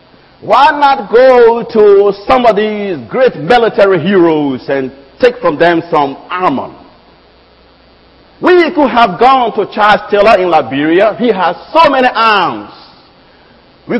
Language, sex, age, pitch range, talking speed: English, male, 50-69, 180-280 Hz, 135 wpm